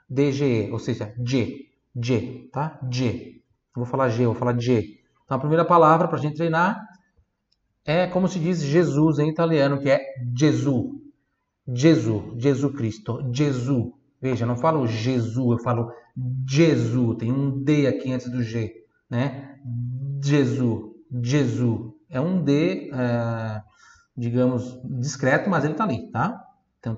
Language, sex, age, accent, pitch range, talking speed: Italian, male, 30-49, Brazilian, 120-145 Hz, 140 wpm